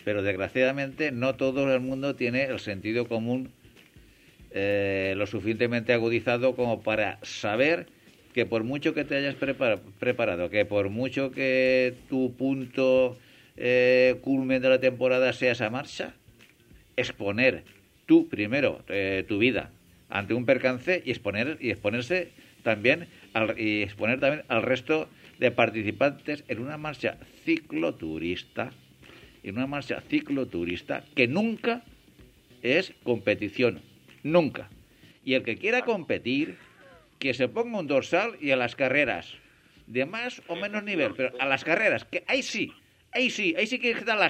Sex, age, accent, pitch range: male, 60-79, Spanish, 115-165 Hz